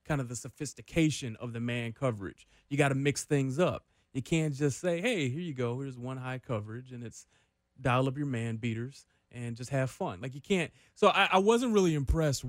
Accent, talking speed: American, 215 wpm